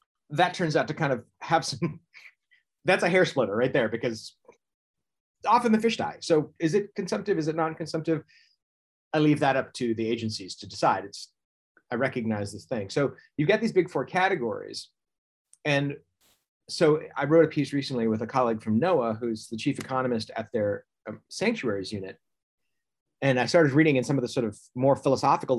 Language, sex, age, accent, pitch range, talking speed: English, male, 30-49, American, 120-165 Hz, 190 wpm